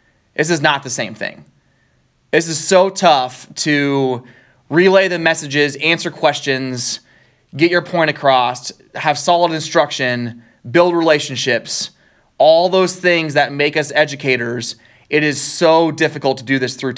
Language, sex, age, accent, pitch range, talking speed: English, male, 20-39, American, 130-165 Hz, 140 wpm